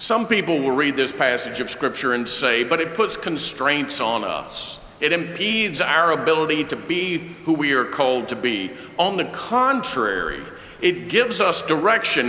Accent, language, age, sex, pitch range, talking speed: American, English, 50-69, male, 140-220 Hz, 170 wpm